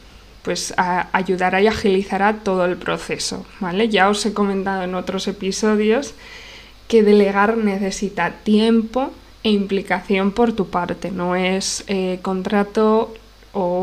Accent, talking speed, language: Spanish, 135 wpm, Spanish